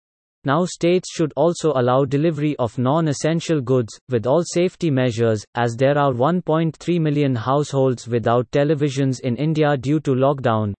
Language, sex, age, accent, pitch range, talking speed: English, male, 30-49, Indian, 125-155 Hz, 145 wpm